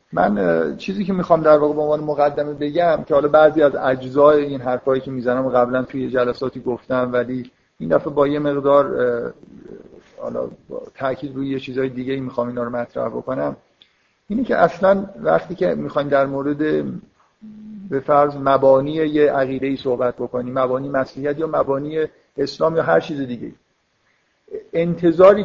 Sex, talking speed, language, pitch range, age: male, 155 wpm, Persian, 130-160 Hz, 50-69